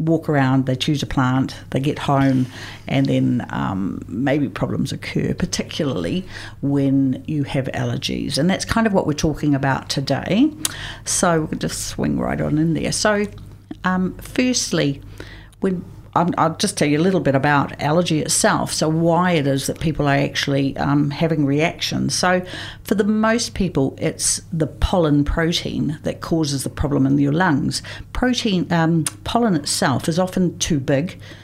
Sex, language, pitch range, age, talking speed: female, English, 130-165 Hz, 50-69, 165 wpm